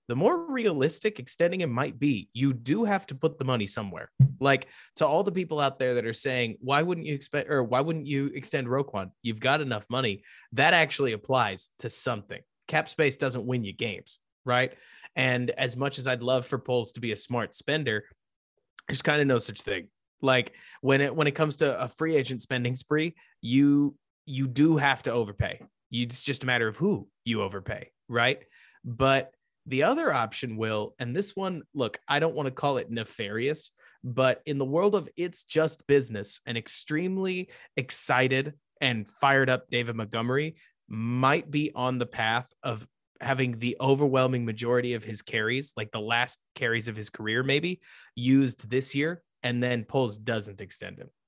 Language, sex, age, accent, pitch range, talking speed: English, male, 20-39, American, 120-145 Hz, 185 wpm